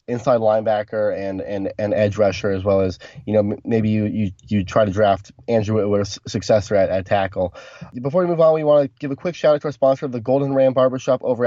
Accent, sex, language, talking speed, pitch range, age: American, male, English, 250 wpm, 110-140 Hz, 20-39